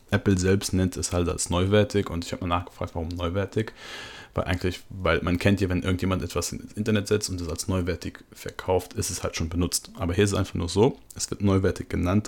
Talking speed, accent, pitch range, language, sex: 230 wpm, German, 85-105 Hz, German, male